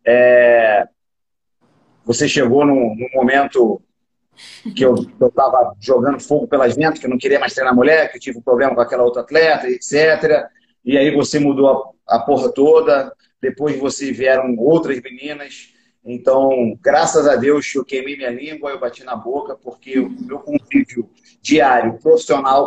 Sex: male